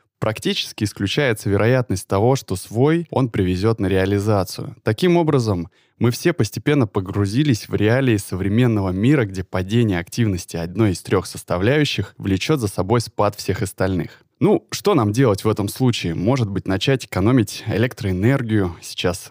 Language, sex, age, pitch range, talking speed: Russian, male, 20-39, 95-125 Hz, 145 wpm